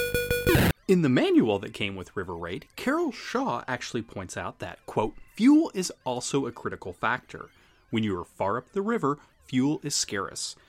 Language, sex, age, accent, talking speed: English, male, 30-49, American, 175 wpm